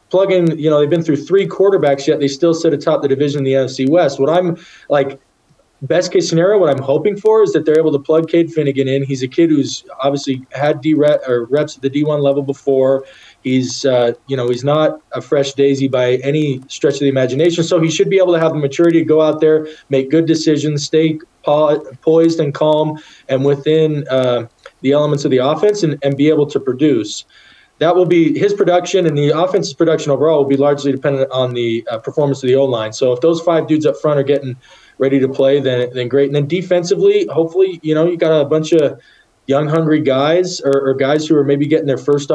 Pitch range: 135-160 Hz